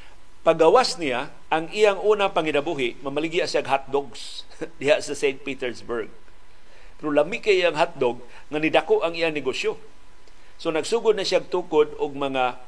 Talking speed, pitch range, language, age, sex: 140 wpm, 140-190 Hz, Filipino, 50-69, male